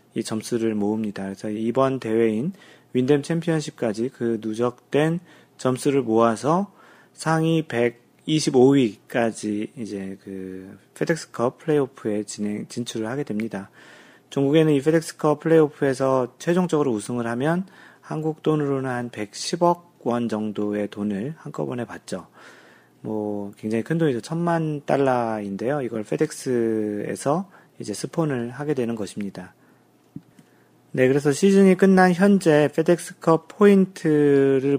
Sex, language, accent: male, Korean, native